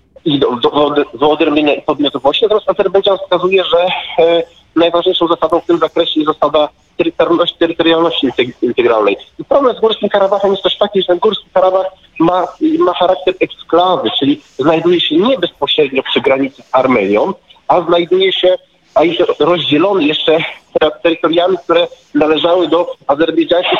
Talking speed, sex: 145 wpm, male